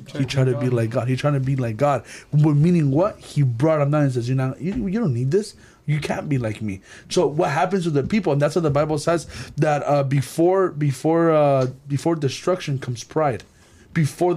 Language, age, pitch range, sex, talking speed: English, 30-49, 140-210 Hz, male, 230 wpm